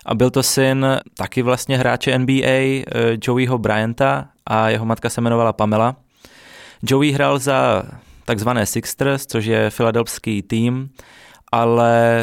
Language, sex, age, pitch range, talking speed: Czech, male, 20-39, 110-125 Hz, 130 wpm